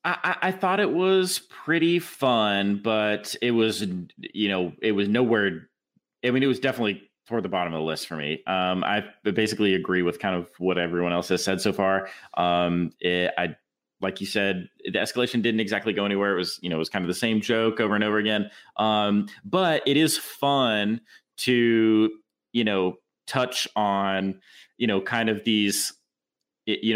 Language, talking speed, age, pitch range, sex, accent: English, 190 wpm, 30-49, 105-135 Hz, male, American